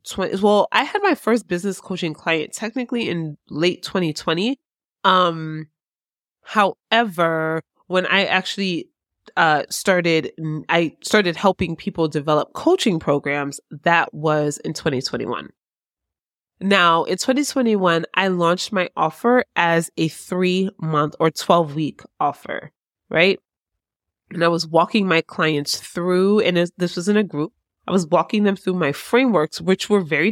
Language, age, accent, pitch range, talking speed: English, 20-39, American, 160-205 Hz, 135 wpm